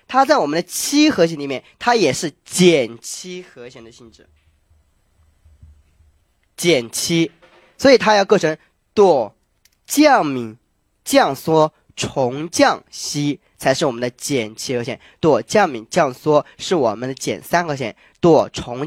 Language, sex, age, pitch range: Chinese, male, 20-39, 115-180 Hz